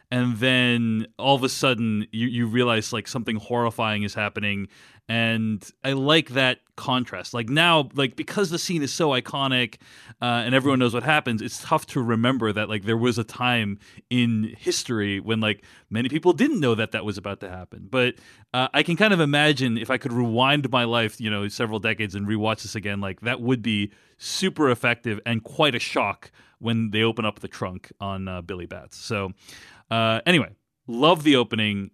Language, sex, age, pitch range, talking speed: English, male, 30-49, 110-130 Hz, 195 wpm